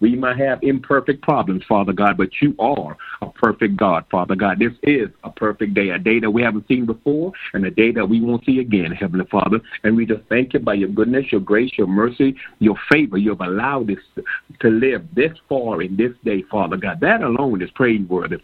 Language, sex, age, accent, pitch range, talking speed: English, male, 50-69, American, 100-120 Hz, 220 wpm